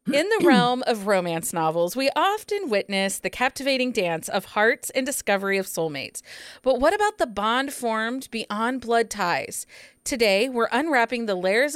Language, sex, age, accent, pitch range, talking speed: English, female, 30-49, American, 195-265 Hz, 165 wpm